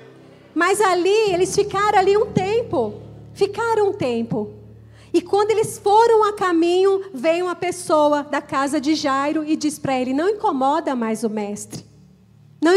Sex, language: female, Portuguese